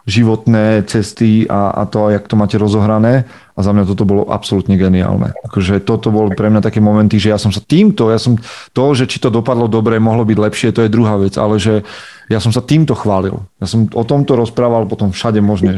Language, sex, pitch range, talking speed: Slovak, male, 105-125 Hz, 220 wpm